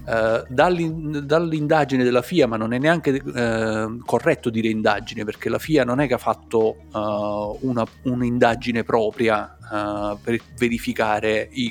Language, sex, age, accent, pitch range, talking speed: Italian, male, 40-59, native, 110-135 Hz, 120 wpm